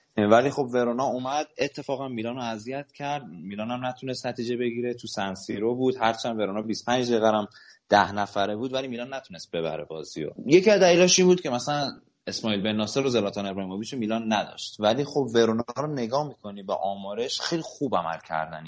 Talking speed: 175 wpm